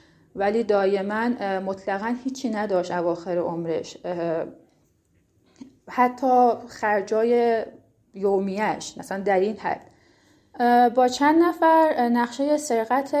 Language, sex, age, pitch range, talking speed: Persian, female, 30-49, 190-245 Hz, 85 wpm